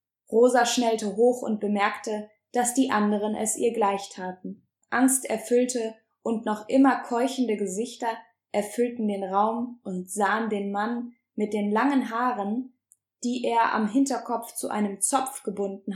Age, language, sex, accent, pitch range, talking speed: 20-39, German, female, German, 195-235 Hz, 145 wpm